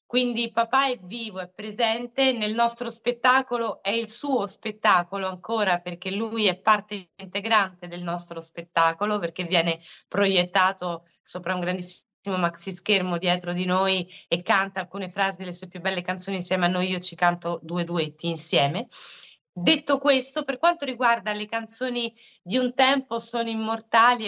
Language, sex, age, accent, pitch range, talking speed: Italian, female, 20-39, native, 195-270 Hz, 155 wpm